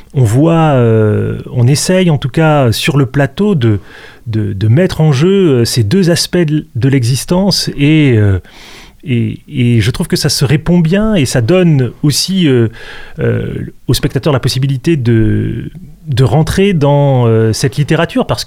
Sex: male